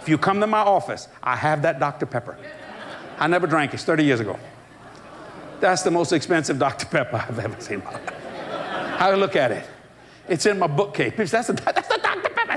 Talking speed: 195 wpm